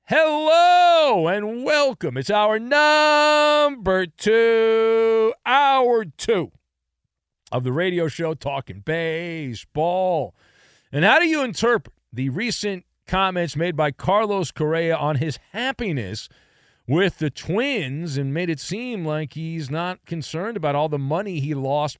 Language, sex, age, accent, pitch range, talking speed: English, male, 40-59, American, 150-250 Hz, 130 wpm